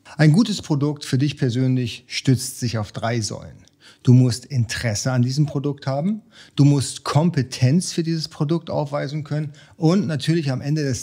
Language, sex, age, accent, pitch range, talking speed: German, male, 40-59, German, 125-155 Hz, 170 wpm